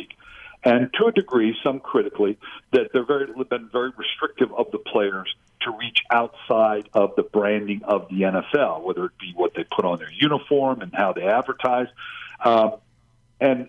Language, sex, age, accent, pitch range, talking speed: English, male, 50-69, American, 105-130 Hz, 170 wpm